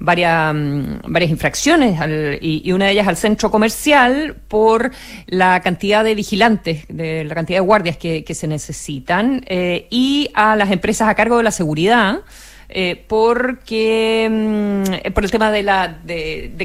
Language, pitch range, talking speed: Spanish, 175-220 Hz, 160 wpm